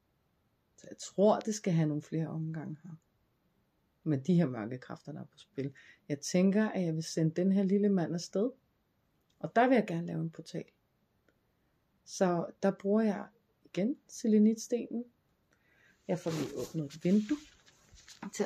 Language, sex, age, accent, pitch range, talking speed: Danish, female, 30-49, native, 165-220 Hz, 160 wpm